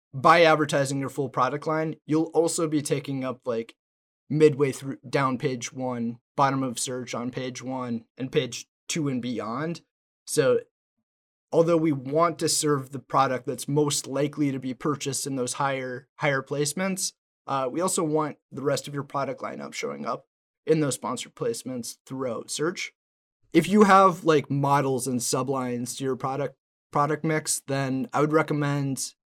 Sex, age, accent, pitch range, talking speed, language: male, 20-39, American, 130-155 Hz, 165 wpm, English